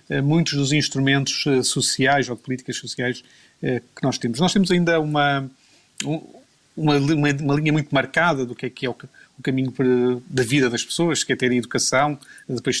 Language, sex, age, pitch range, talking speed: Portuguese, male, 30-49, 130-150 Hz, 175 wpm